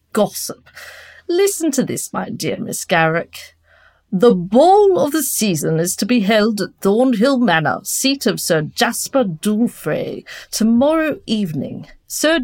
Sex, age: female, 40-59